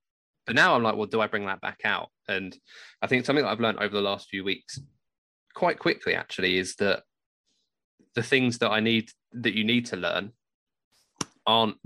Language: English